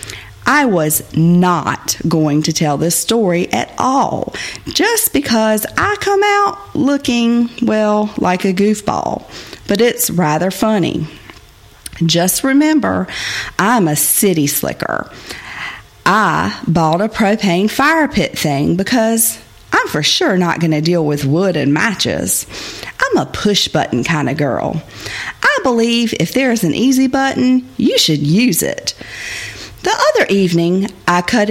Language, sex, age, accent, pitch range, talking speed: English, female, 40-59, American, 160-240 Hz, 135 wpm